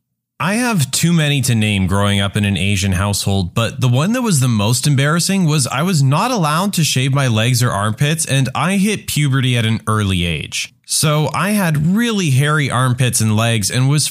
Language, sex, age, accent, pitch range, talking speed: English, male, 20-39, American, 115-160 Hz, 210 wpm